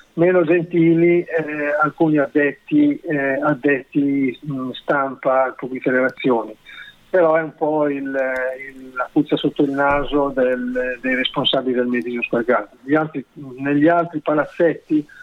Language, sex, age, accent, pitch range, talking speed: Italian, male, 50-69, native, 130-155 Hz, 130 wpm